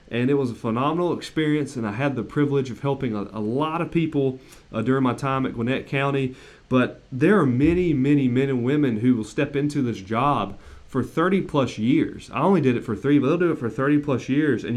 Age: 30-49